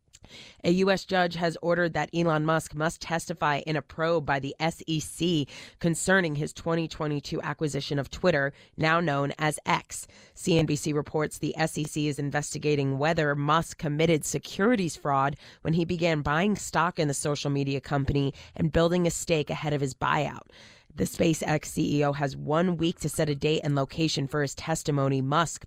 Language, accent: English, American